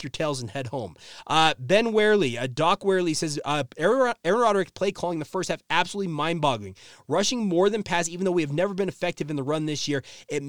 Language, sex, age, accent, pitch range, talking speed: English, male, 30-49, American, 140-190 Hz, 225 wpm